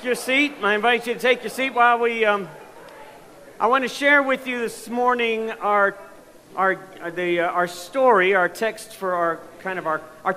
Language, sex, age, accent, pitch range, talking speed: English, male, 50-69, American, 145-195 Hz, 195 wpm